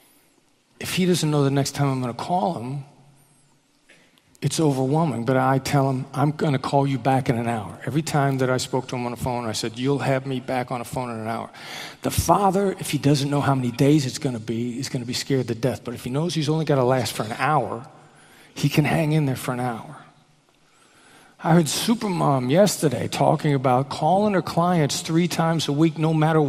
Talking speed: 235 wpm